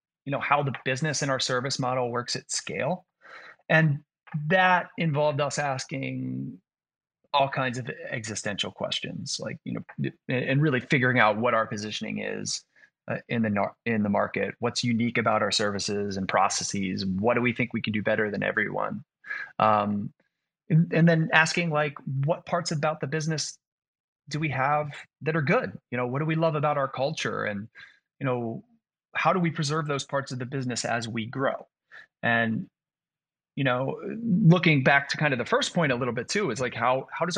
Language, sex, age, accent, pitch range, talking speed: English, male, 30-49, American, 120-160 Hz, 190 wpm